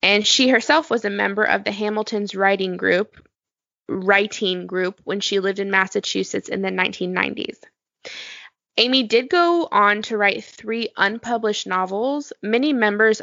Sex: female